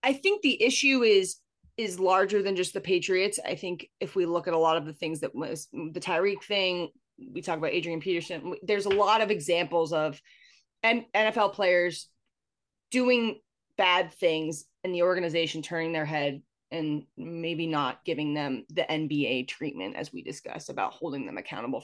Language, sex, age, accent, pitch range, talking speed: English, female, 20-39, American, 165-220 Hz, 175 wpm